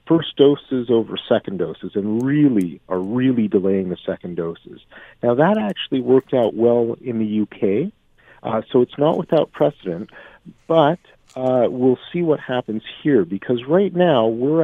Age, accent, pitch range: 50-69, American, 110-135 Hz